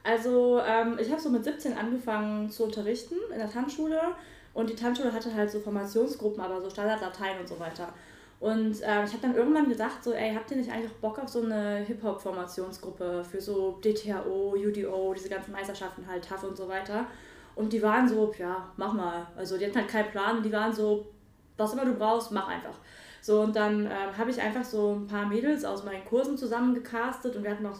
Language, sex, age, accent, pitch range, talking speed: German, female, 20-39, German, 210-250 Hz, 210 wpm